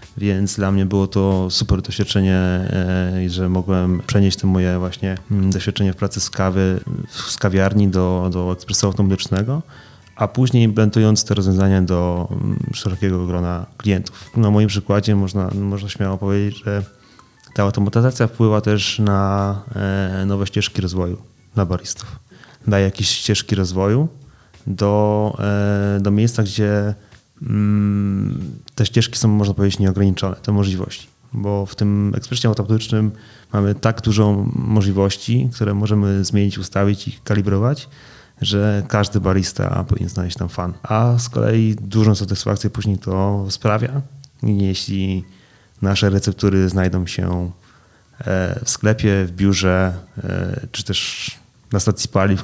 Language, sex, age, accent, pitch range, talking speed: Polish, male, 20-39, native, 95-110 Hz, 130 wpm